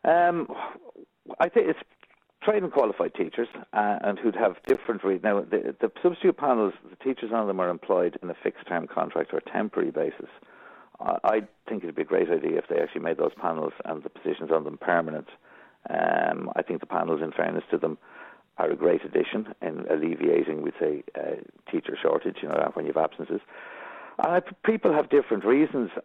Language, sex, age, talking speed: English, male, 60-79, 195 wpm